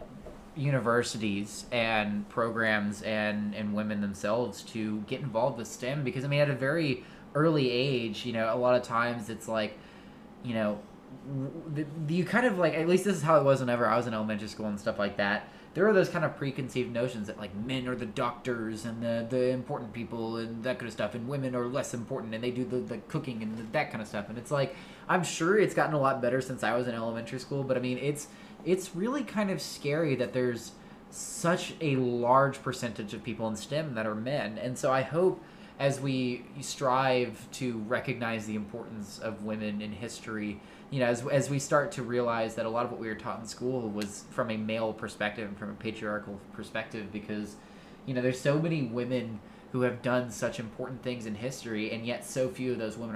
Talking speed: 220 wpm